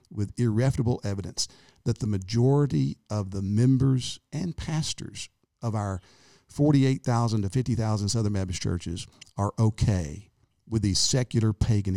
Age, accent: 50-69, American